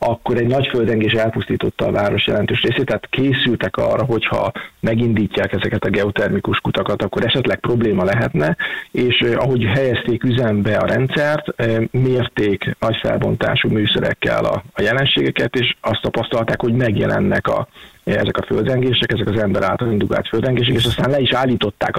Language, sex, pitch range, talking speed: Hungarian, male, 105-130 Hz, 145 wpm